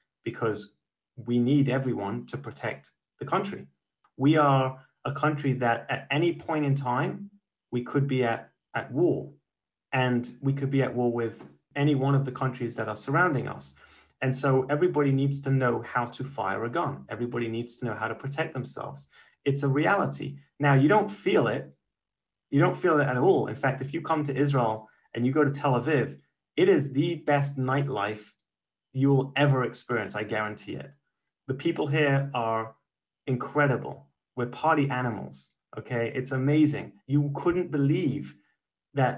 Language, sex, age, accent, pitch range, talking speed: English, male, 30-49, British, 120-145 Hz, 175 wpm